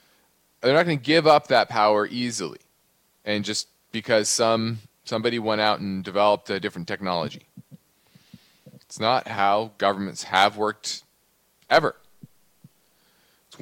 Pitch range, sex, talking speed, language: 100-120 Hz, male, 130 wpm, English